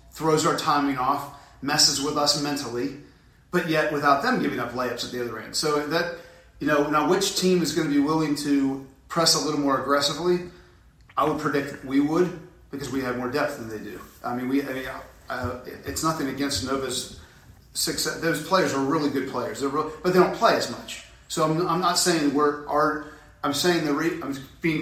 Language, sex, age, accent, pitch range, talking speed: English, male, 40-59, American, 130-155 Hz, 215 wpm